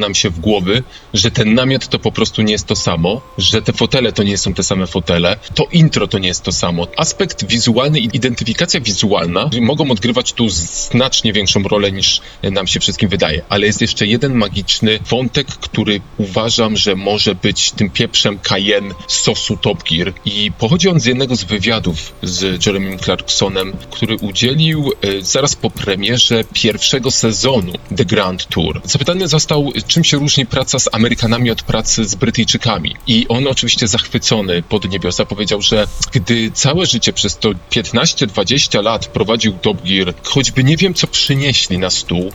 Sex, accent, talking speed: male, native, 170 wpm